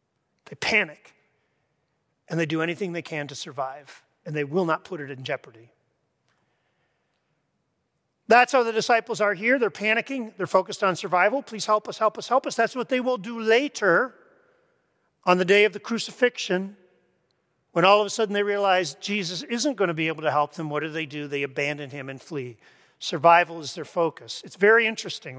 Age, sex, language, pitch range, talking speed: 40-59, male, English, 155-215 Hz, 190 wpm